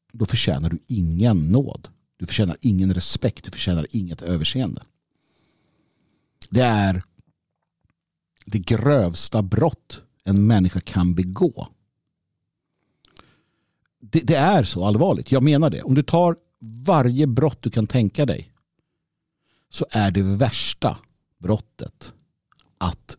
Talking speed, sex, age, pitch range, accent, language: 115 wpm, male, 50-69, 90-135 Hz, native, Swedish